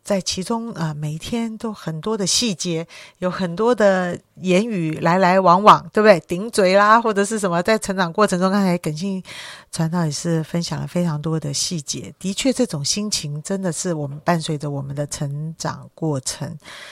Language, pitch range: Chinese, 150-190 Hz